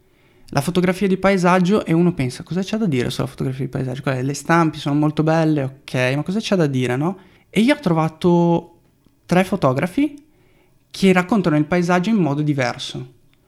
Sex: male